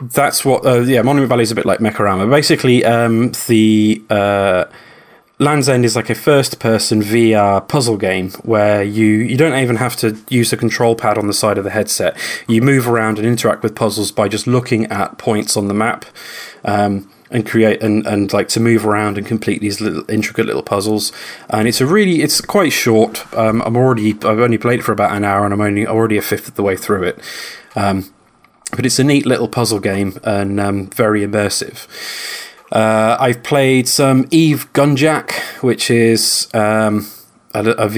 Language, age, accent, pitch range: English, 20-39, British, 105-120 Hz